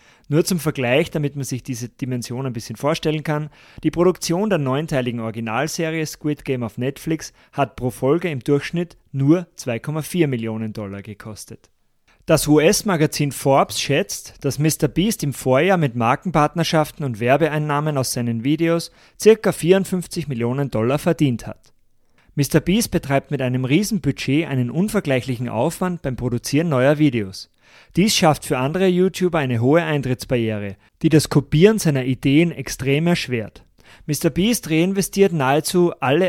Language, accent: German, German